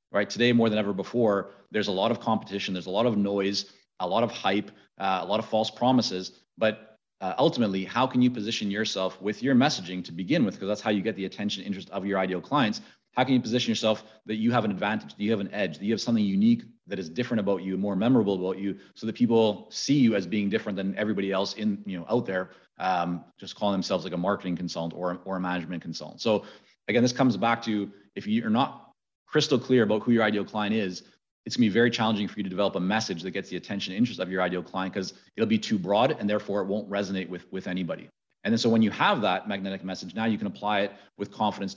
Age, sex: 30-49, male